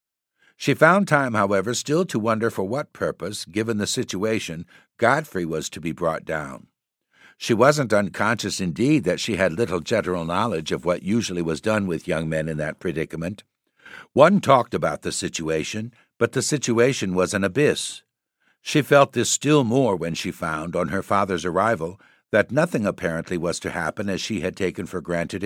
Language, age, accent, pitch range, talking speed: English, 60-79, American, 90-120 Hz, 175 wpm